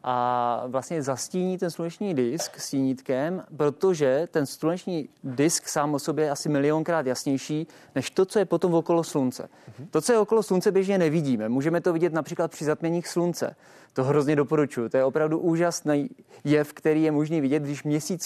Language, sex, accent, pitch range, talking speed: Czech, male, native, 140-170 Hz, 175 wpm